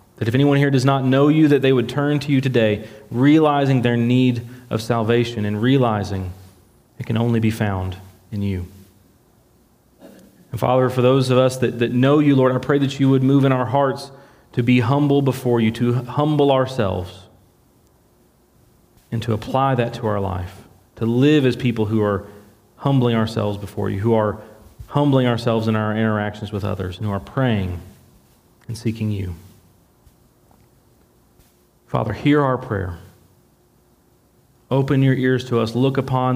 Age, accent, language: 30-49, American, English